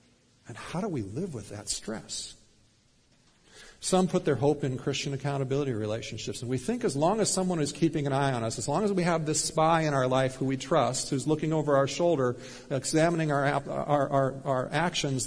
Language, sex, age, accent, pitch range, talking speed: English, male, 50-69, American, 125-160 Hz, 210 wpm